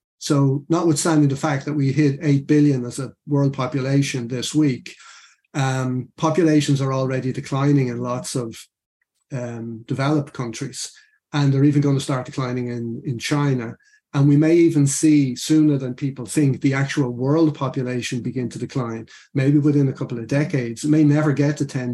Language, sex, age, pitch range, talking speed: English, male, 30-49, 130-155 Hz, 170 wpm